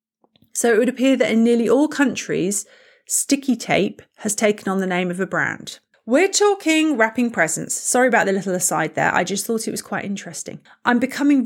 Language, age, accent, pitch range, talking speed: English, 30-49, British, 185-255 Hz, 200 wpm